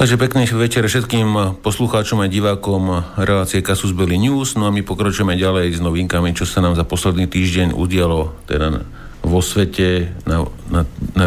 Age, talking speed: 50-69, 165 wpm